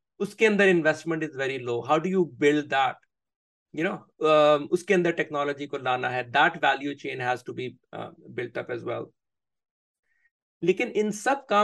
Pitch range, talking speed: 150-190 Hz, 140 wpm